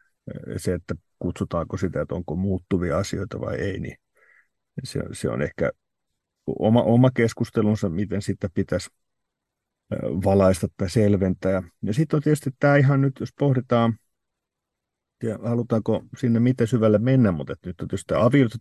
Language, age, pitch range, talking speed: Finnish, 50-69, 90-115 Hz, 140 wpm